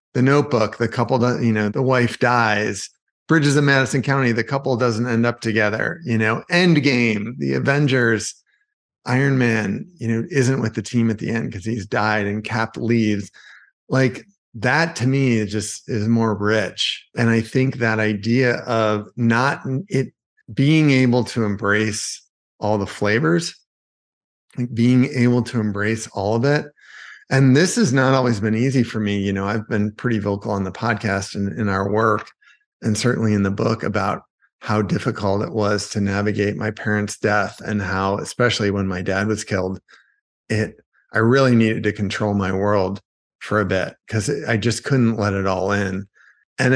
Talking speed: 175 wpm